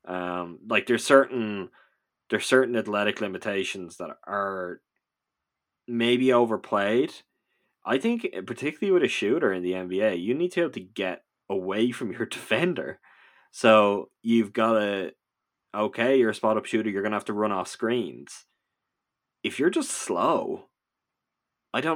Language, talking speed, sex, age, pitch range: English, 150 wpm, male, 20-39, 95-120 Hz